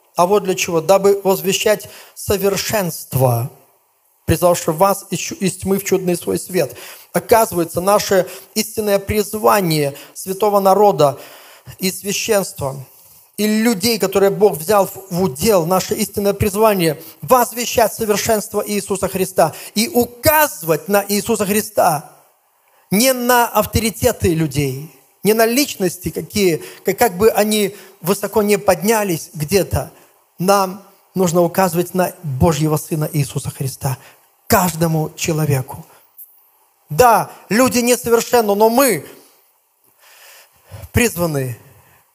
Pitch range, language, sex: 165-225 Hz, Russian, male